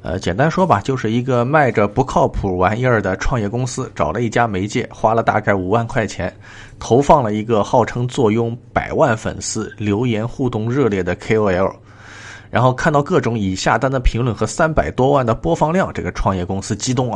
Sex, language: male, Chinese